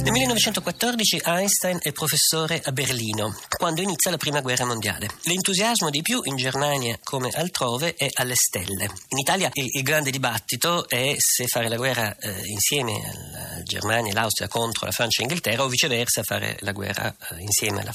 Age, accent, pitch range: 50-69, native, 120-165 Hz